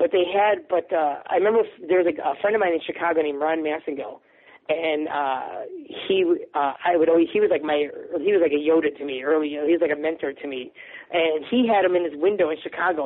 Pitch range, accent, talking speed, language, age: 160-230 Hz, American, 250 wpm, English, 40-59